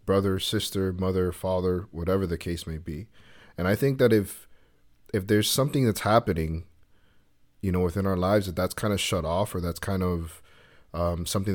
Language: English